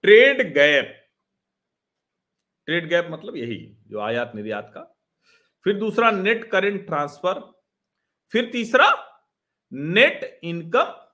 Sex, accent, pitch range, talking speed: male, native, 145-235 Hz, 100 wpm